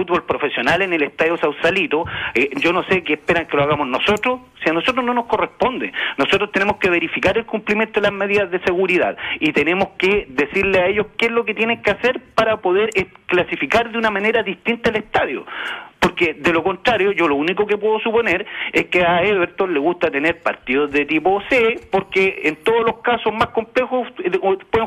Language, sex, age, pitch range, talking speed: Spanish, male, 40-59, 170-225 Hz, 205 wpm